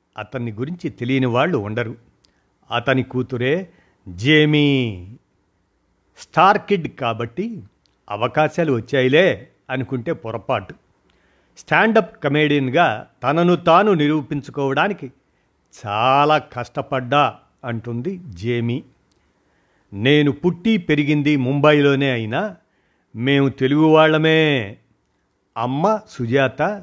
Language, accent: Telugu, native